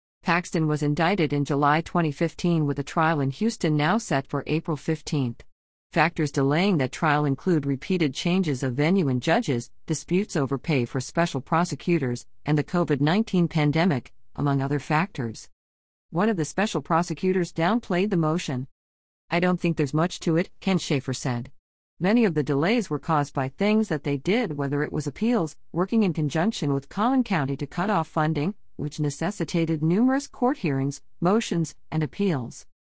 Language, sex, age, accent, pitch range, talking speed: English, female, 50-69, American, 140-175 Hz, 165 wpm